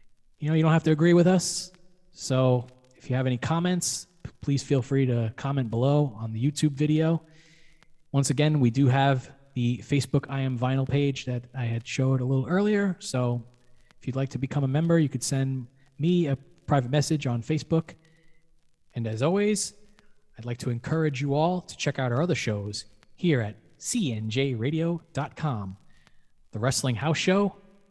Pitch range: 125-165 Hz